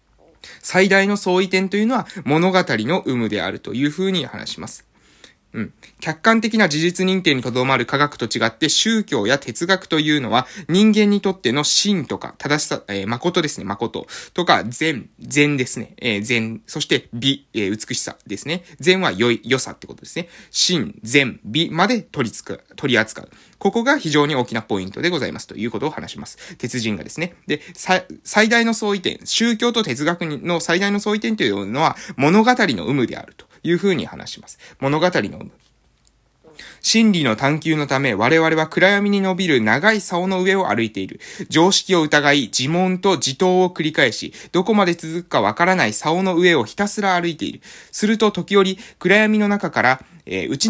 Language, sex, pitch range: Japanese, male, 140-200 Hz